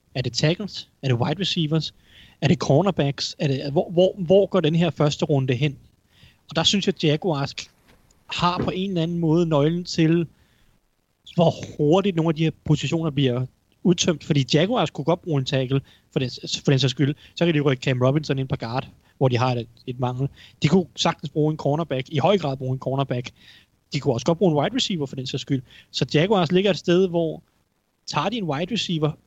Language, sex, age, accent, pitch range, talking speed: Danish, male, 30-49, native, 135-175 Hz, 220 wpm